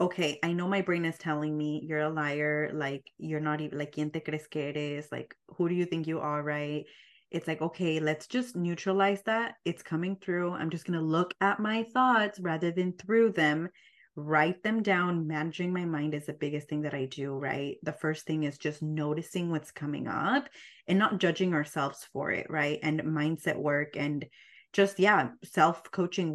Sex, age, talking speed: female, 20-39, 200 wpm